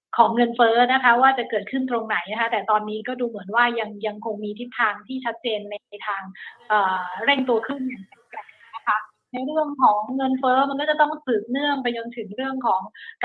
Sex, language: female, Thai